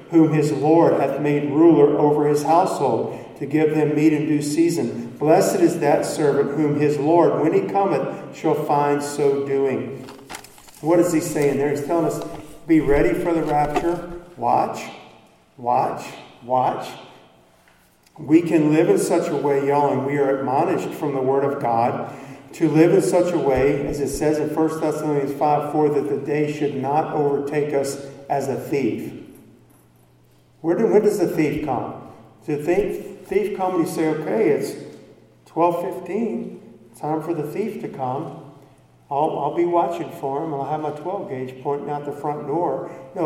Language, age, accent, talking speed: English, 50-69, American, 180 wpm